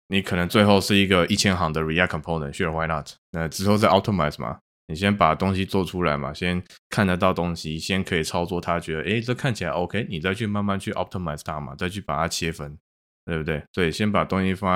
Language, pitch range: Chinese, 80-95 Hz